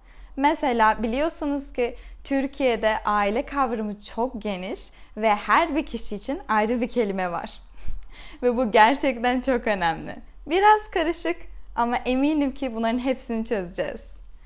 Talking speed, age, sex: 125 wpm, 10-29, female